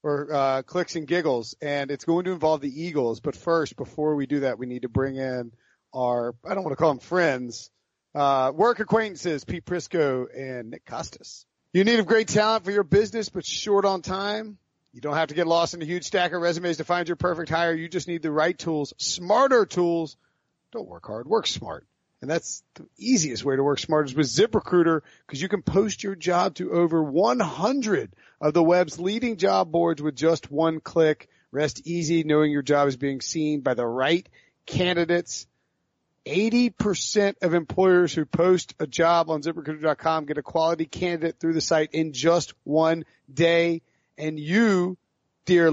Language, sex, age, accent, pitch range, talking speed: English, male, 40-59, American, 150-180 Hz, 190 wpm